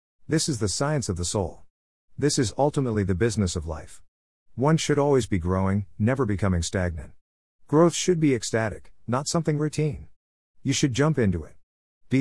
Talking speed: 170 wpm